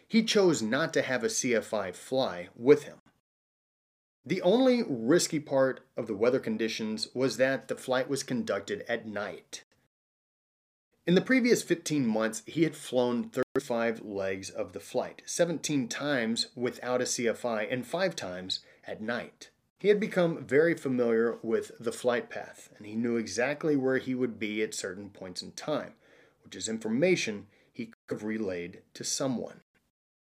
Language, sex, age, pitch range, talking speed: English, male, 30-49, 115-155 Hz, 160 wpm